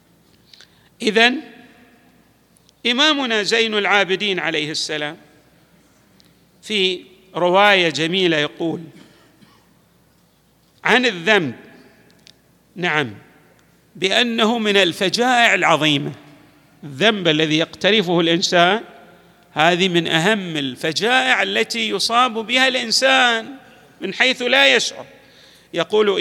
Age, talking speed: 50-69, 80 wpm